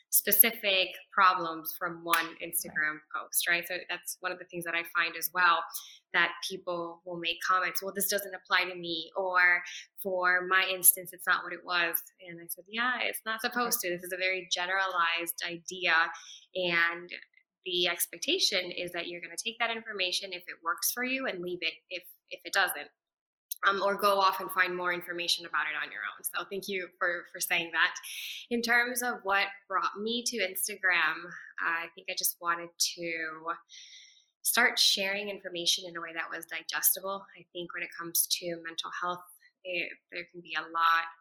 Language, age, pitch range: English, 10-29, 170-195 Hz